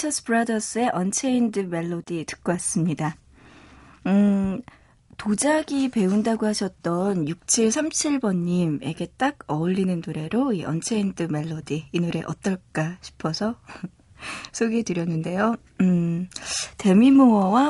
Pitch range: 170-230 Hz